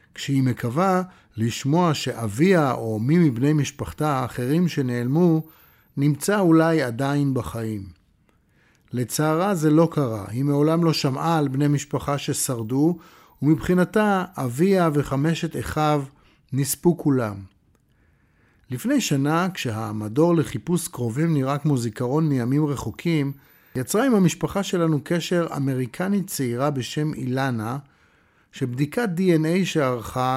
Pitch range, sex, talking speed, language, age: 125-170 Hz, male, 105 wpm, Hebrew, 50-69